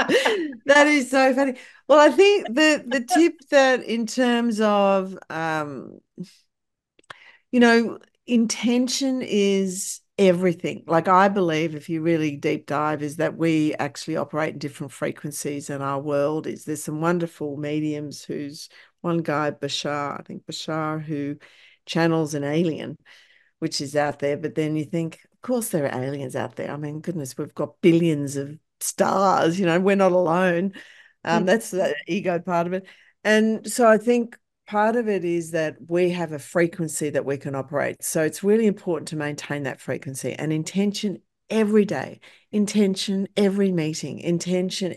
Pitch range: 155-200 Hz